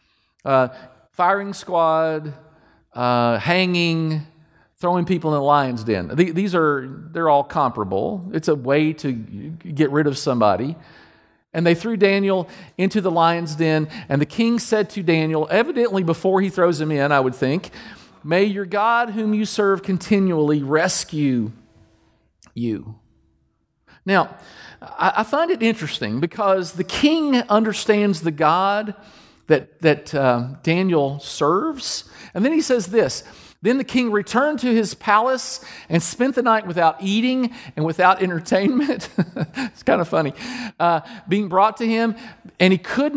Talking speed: 145 wpm